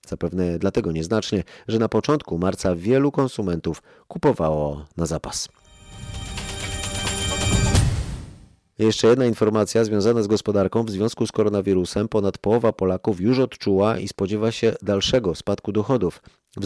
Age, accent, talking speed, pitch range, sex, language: 30-49, native, 125 wpm, 95-115 Hz, male, Polish